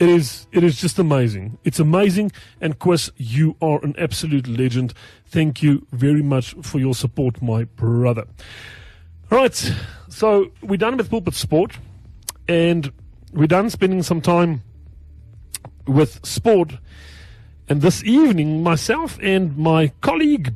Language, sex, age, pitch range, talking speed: English, male, 40-59, 110-175 Hz, 135 wpm